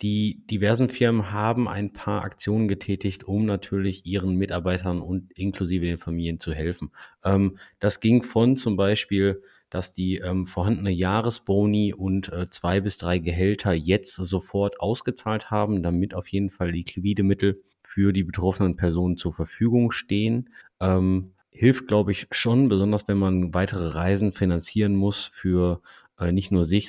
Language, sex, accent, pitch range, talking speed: German, male, German, 90-110 Hz, 150 wpm